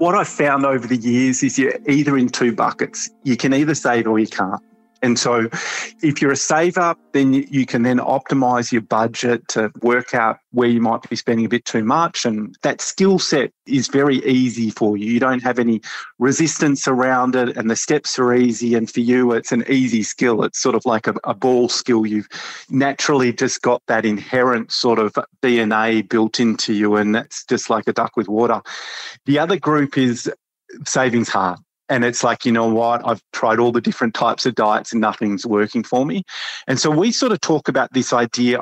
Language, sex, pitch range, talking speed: English, male, 115-135 Hz, 210 wpm